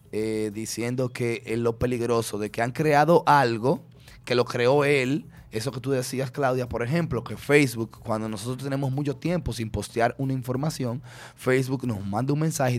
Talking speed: 180 wpm